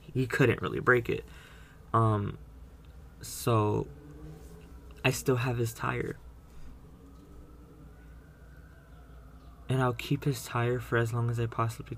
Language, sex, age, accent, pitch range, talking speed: English, male, 20-39, American, 110-125 Hz, 115 wpm